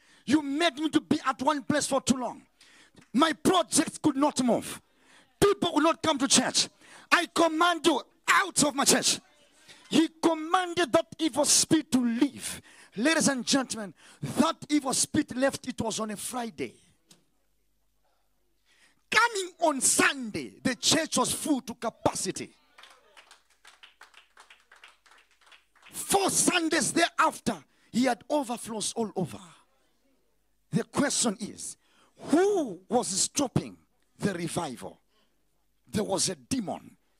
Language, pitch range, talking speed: English, 240-325 Hz, 125 wpm